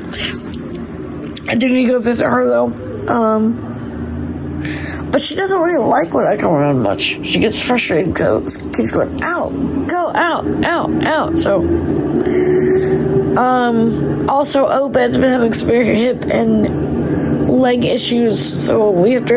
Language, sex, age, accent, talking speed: English, female, 20-39, American, 140 wpm